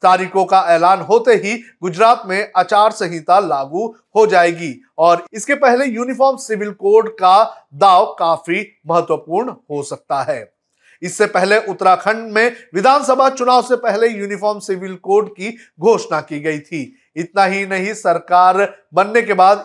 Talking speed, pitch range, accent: 145 wpm, 170-225 Hz, native